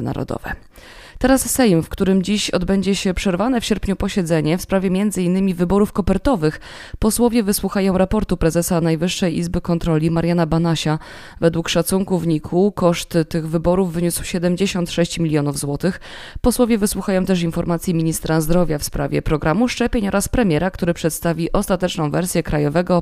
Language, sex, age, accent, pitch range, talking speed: Polish, female, 20-39, native, 165-200 Hz, 140 wpm